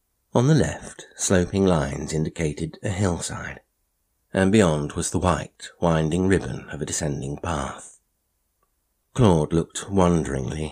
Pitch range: 75-90 Hz